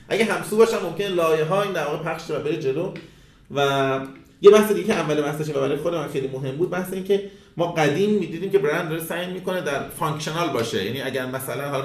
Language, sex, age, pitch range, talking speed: Persian, male, 30-49, 130-175 Hz, 205 wpm